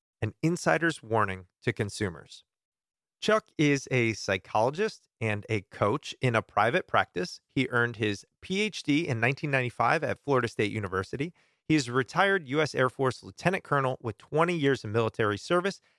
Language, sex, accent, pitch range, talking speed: English, male, American, 115-155 Hz, 155 wpm